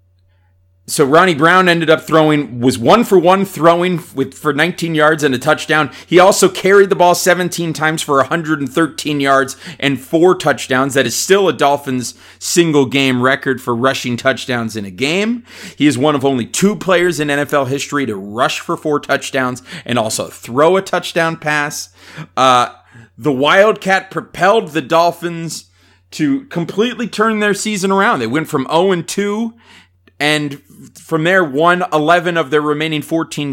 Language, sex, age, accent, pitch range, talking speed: English, male, 30-49, American, 120-165 Hz, 165 wpm